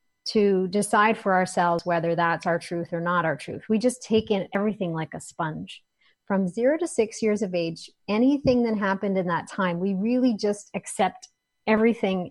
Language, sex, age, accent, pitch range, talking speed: English, female, 30-49, American, 170-210 Hz, 185 wpm